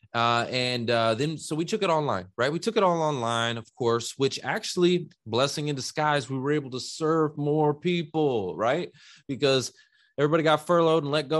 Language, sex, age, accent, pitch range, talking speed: English, male, 20-39, American, 125-155 Hz, 195 wpm